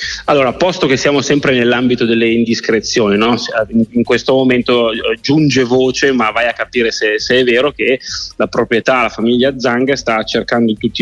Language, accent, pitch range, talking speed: Italian, native, 110-130 Hz, 175 wpm